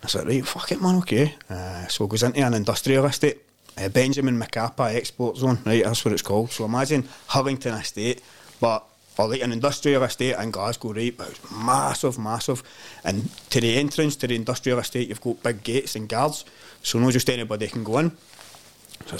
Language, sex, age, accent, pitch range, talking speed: English, male, 30-49, British, 115-145 Hz, 205 wpm